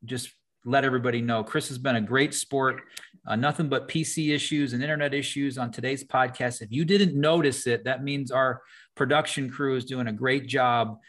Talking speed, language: 195 wpm, English